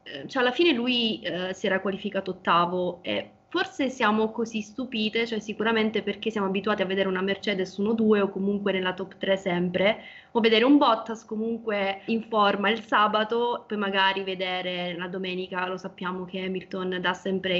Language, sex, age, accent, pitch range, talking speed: Italian, female, 20-39, native, 190-215 Hz, 175 wpm